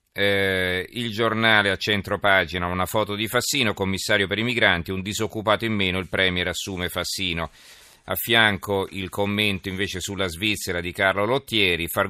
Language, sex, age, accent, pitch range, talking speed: Italian, male, 40-59, native, 85-100 Hz, 165 wpm